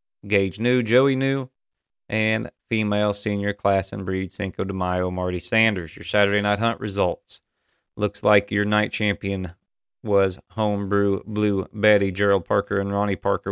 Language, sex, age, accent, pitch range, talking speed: English, male, 30-49, American, 95-115 Hz, 150 wpm